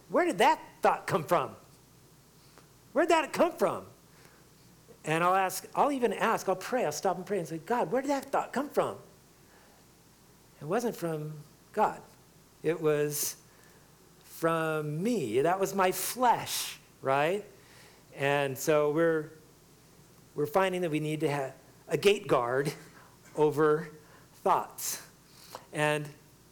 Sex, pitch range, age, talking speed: male, 140-180 Hz, 50-69, 140 wpm